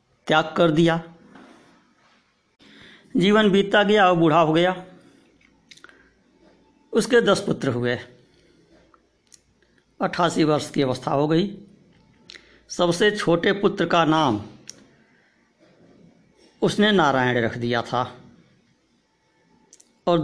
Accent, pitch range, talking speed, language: native, 140-175 Hz, 90 wpm, Hindi